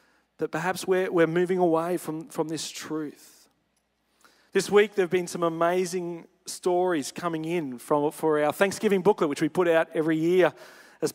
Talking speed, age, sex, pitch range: 170 wpm, 40-59, male, 145-175 Hz